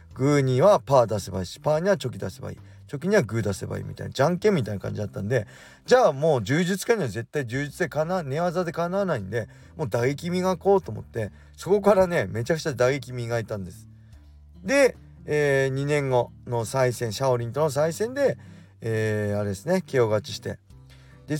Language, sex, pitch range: Japanese, male, 100-150 Hz